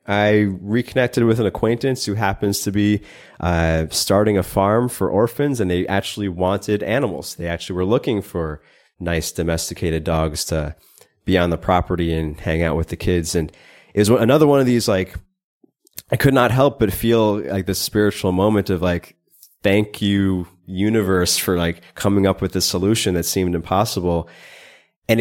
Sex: male